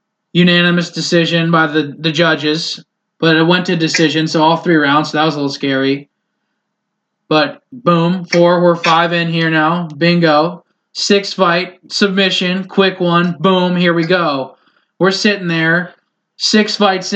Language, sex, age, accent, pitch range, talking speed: English, male, 20-39, American, 170-210 Hz, 150 wpm